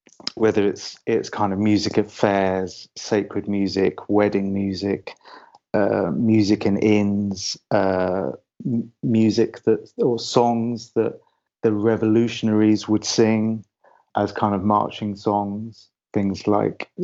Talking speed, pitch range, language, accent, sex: 115 wpm, 100-115 Hz, English, British, male